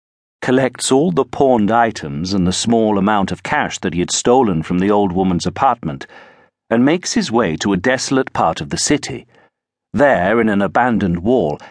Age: 50-69